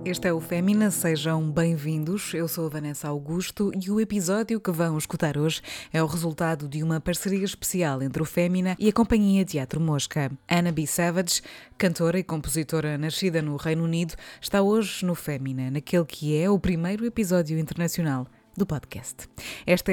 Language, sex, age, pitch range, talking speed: Portuguese, female, 20-39, 155-185 Hz, 175 wpm